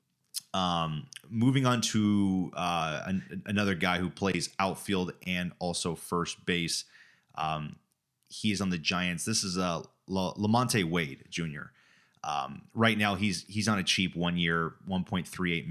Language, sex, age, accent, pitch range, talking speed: English, male, 30-49, American, 90-115 Hz, 140 wpm